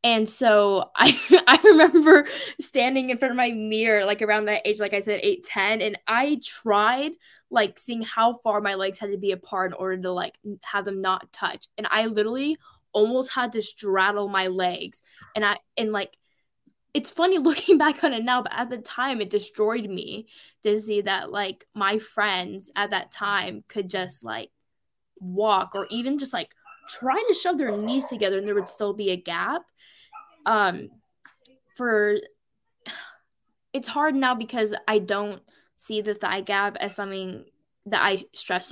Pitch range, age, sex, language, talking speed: 195-245 Hz, 10-29, female, English, 180 wpm